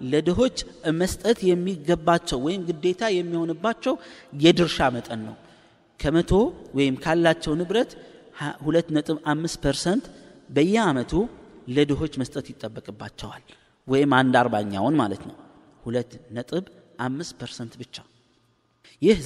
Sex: male